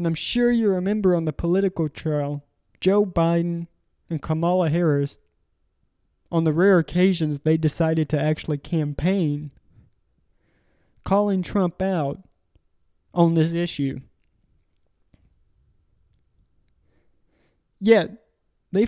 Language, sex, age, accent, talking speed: English, male, 20-39, American, 100 wpm